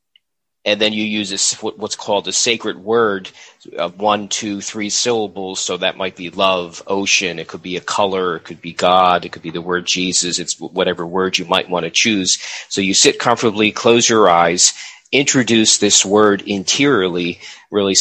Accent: American